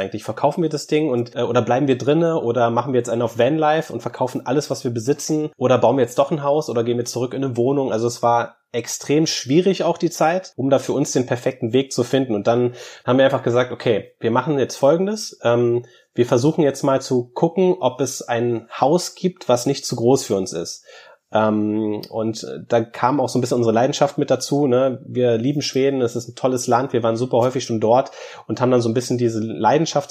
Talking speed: 235 wpm